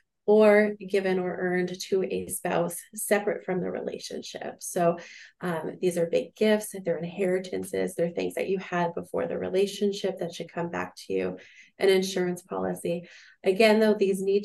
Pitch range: 175-195 Hz